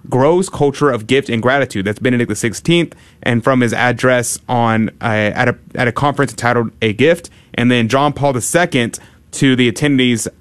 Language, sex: English, male